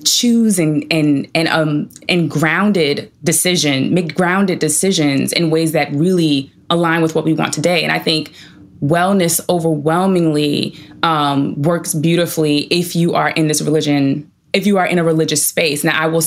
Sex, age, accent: female, 20-39, American